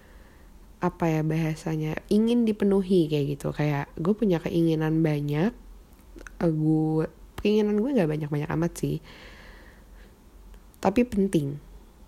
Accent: native